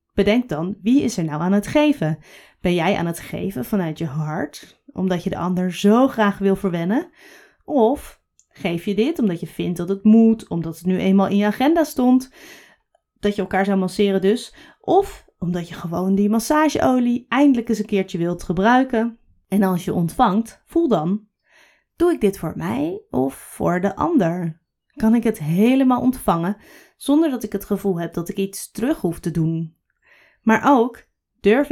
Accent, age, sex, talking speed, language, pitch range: Dutch, 20-39, female, 185 wpm, Dutch, 175-235 Hz